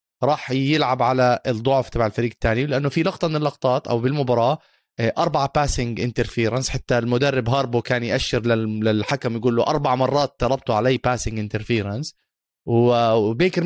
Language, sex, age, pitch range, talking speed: Arabic, male, 30-49, 120-155 Hz, 140 wpm